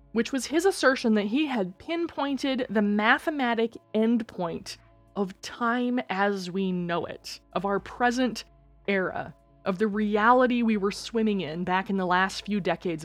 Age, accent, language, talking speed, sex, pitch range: 20-39, American, English, 155 wpm, female, 185-245 Hz